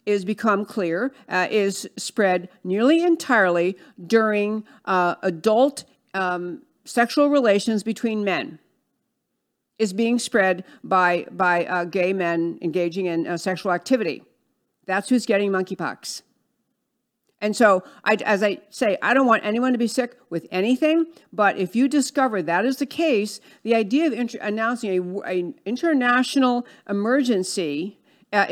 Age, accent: 50-69, American